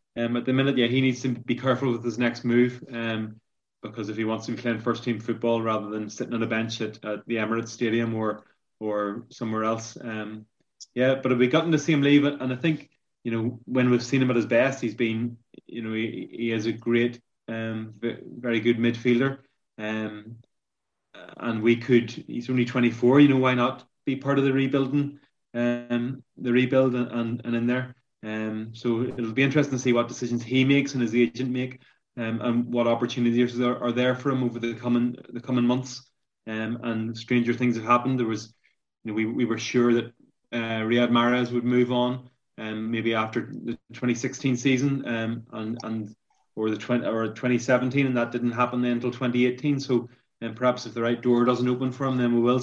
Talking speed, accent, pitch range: 210 wpm, Irish, 115-125 Hz